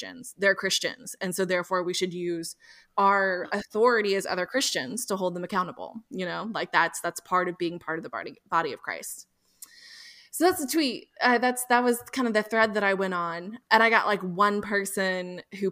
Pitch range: 180-235 Hz